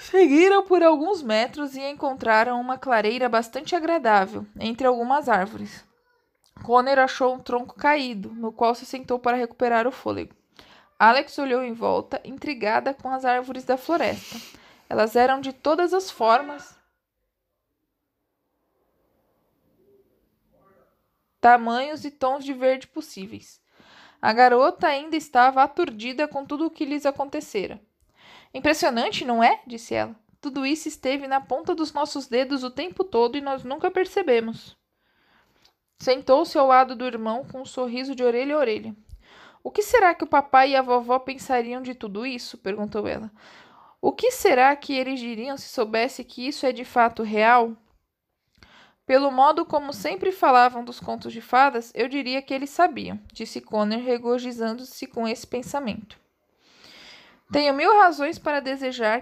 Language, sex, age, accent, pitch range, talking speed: Portuguese, female, 20-39, Brazilian, 240-290 Hz, 155 wpm